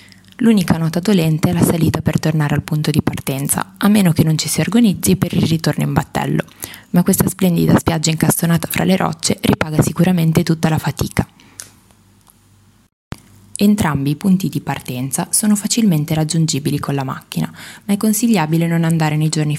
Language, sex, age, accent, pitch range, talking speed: Italian, female, 20-39, native, 145-180 Hz, 170 wpm